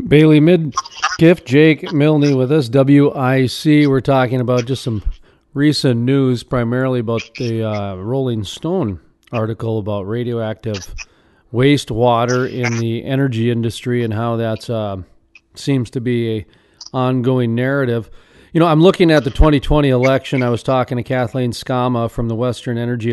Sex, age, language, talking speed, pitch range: male, 40-59, English, 145 wpm, 115-145 Hz